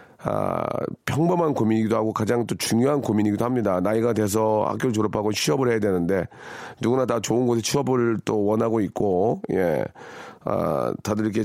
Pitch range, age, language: 105-125 Hz, 40-59, Korean